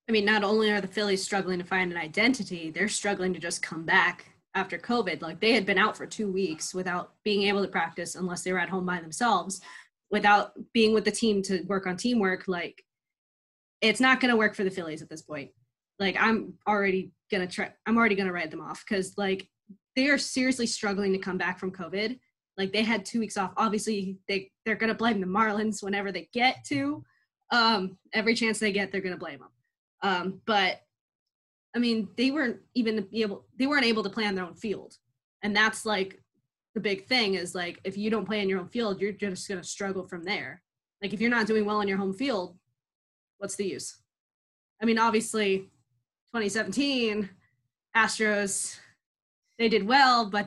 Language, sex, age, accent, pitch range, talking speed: English, female, 20-39, American, 185-220 Hz, 210 wpm